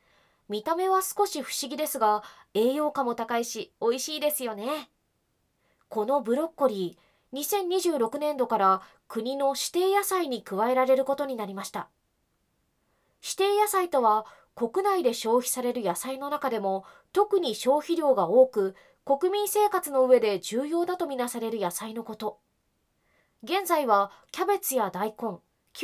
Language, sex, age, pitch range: Japanese, female, 20-39, 220-350 Hz